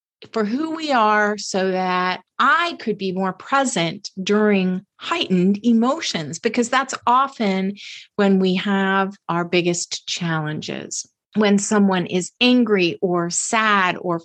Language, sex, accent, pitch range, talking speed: English, female, American, 185-250 Hz, 125 wpm